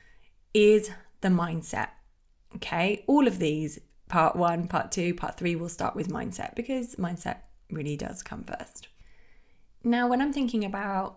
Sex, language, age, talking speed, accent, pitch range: female, English, 20-39, 150 wpm, British, 165-210 Hz